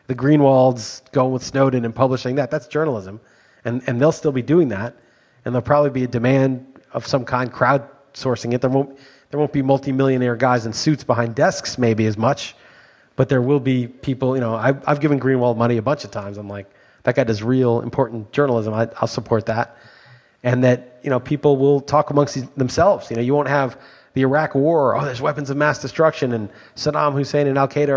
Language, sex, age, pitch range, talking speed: English, male, 30-49, 120-140 Hz, 210 wpm